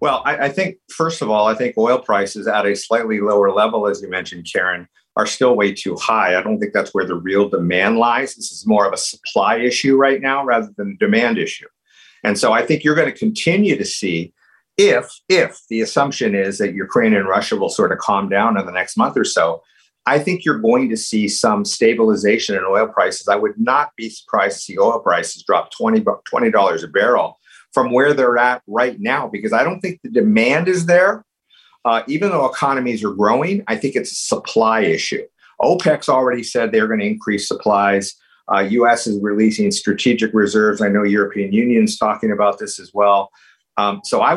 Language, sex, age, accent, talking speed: English, male, 50-69, American, 205 wpm